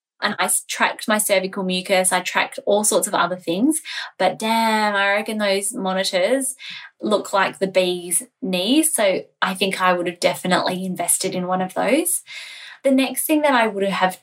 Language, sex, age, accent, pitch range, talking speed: English, female, 20-39, Australian, 185-235 Hz, 180 wpm